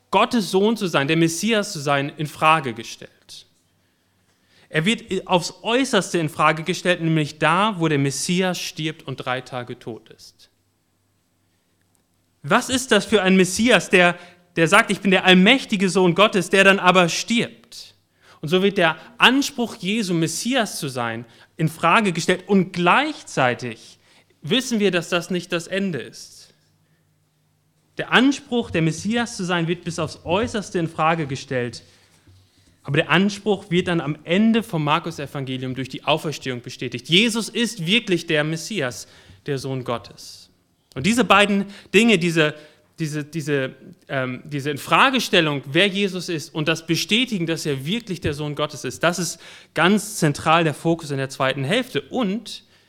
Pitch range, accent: 135-195 Hz, German